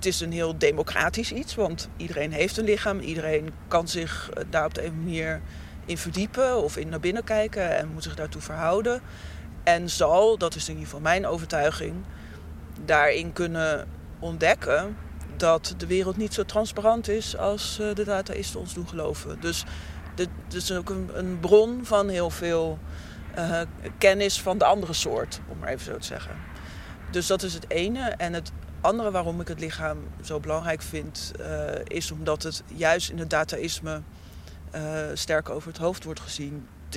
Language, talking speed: Dutch, 180 wpm